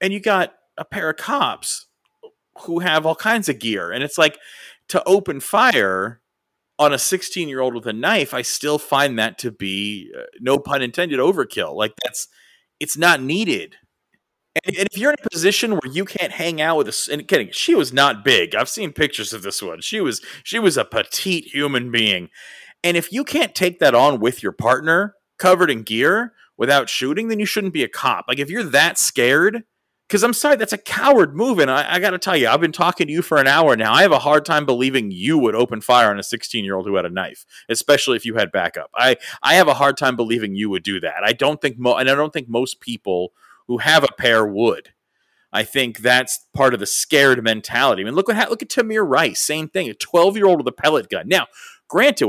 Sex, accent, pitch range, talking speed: male, American, 120-195 Hz, 230 wpm